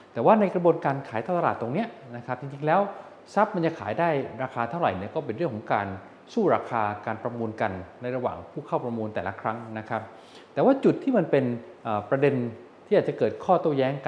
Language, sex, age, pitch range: Thai, male, 20-39, 115-160 Hz